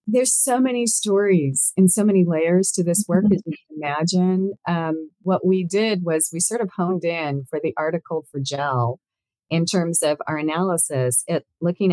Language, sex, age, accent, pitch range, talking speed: English, female, 40-59, American, 135-175 Hz, 175 wpm